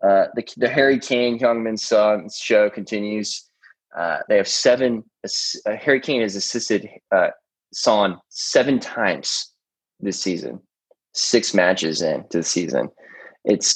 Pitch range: 95-125 Hz